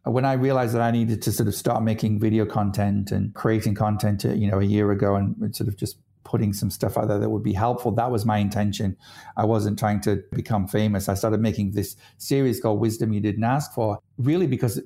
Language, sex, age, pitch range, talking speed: English, male, 50-69, 105-125 Hz, 230 wpm